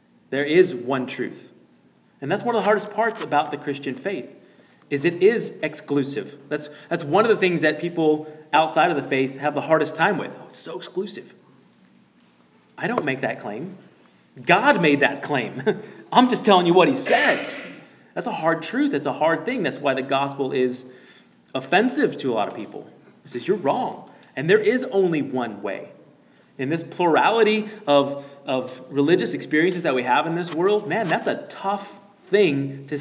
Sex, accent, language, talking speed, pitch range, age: male, American, English, 185 wpm, 130-195 Hz, 30-49